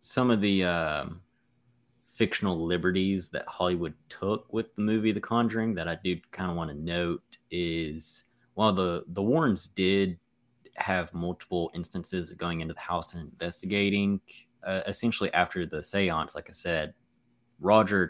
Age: 20-39